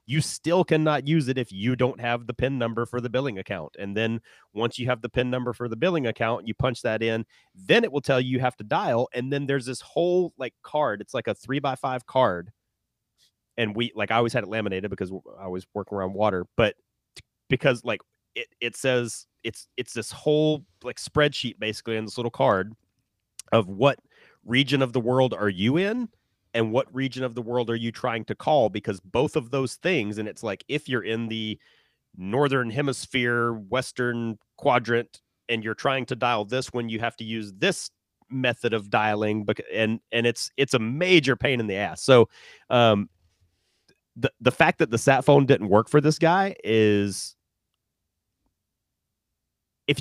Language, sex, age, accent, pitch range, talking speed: English, male, 30-49, American, 110-135 Hz, 195 wpm